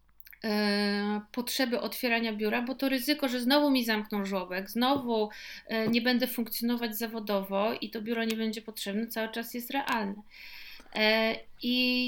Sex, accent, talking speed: female, native, 135 wpm